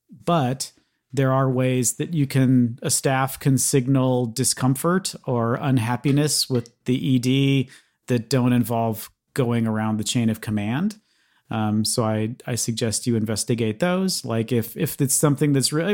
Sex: male